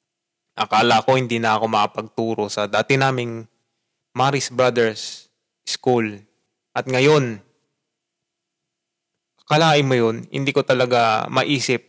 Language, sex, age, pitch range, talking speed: Filipino, male, 20-39, 115-140 Hz, 105 wpm